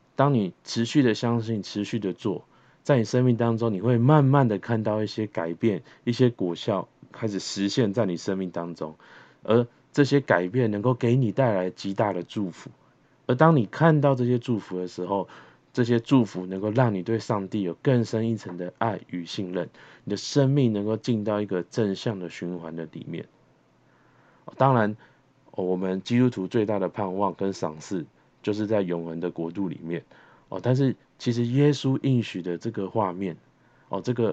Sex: male